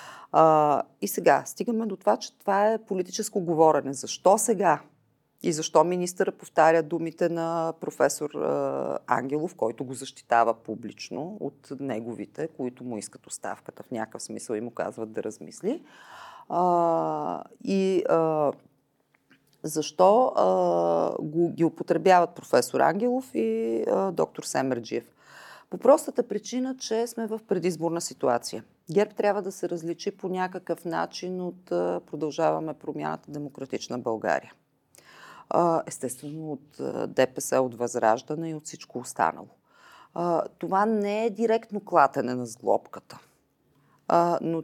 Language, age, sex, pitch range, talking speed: Bulgarian, 40-59, female, 145-190 Hz, 125 wpm